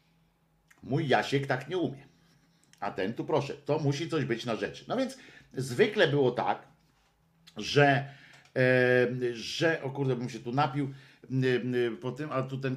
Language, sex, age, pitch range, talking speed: Polish, male, 50-69, 120-155 Hz, 175 wpm